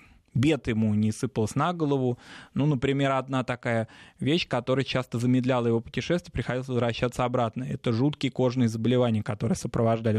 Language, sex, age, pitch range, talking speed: Russian, male, 20-39, 115-140 Hz, 145 wpm